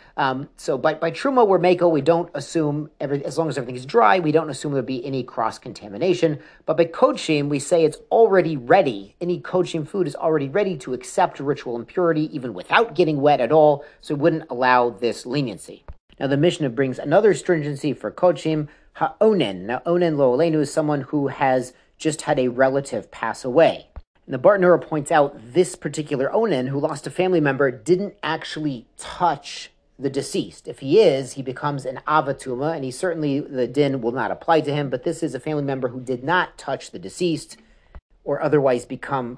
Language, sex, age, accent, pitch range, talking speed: English, male, 40-59, American, 135-165 Hz, 195 wpm